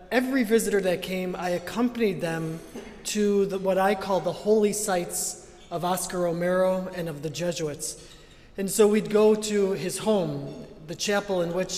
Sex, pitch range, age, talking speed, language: male, 180-220 Hz, 30-49, 165 wpm, English